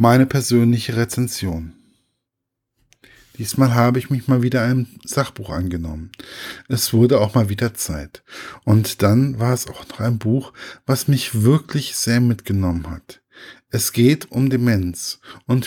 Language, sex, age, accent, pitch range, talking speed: German, male, 10-29, German, 110-135 Hz, 145 wpm